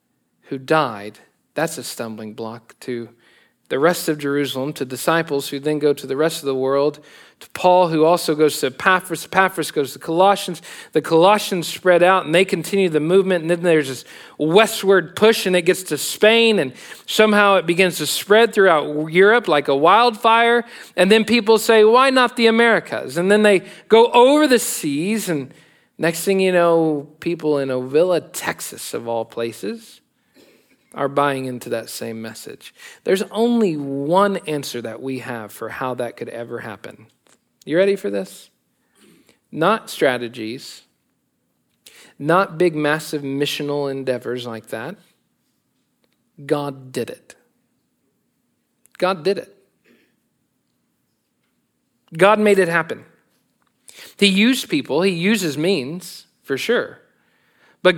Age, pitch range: 40-59, 140-200 Hz